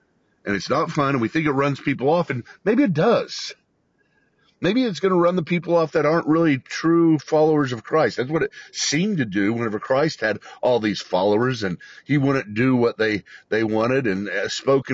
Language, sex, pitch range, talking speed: English, male, 105-145 Hz, 210 wpm